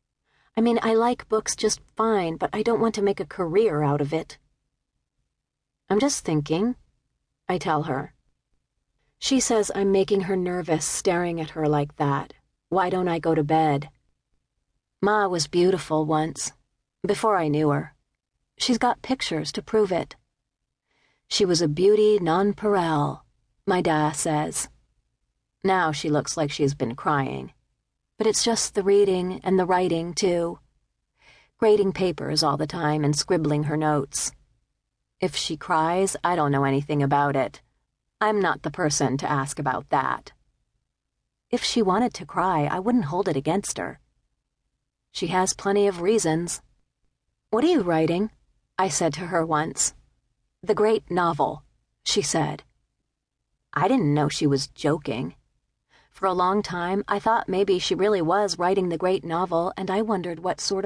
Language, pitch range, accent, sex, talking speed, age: English, 145-200 Hz, American, female, 160 wpm, 40-59